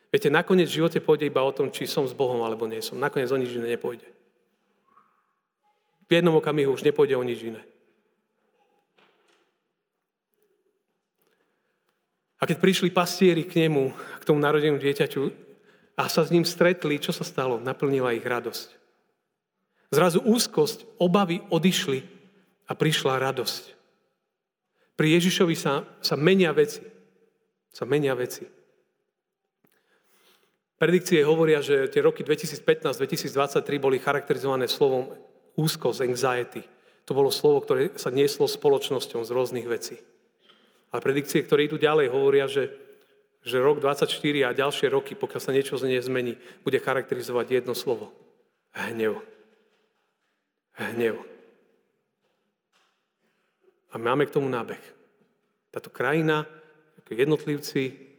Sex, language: male, Slovak